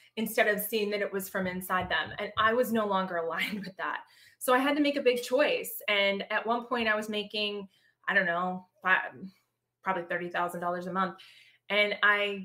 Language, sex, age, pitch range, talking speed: English, female, 20-39, 190-230 Hz, 205 wpm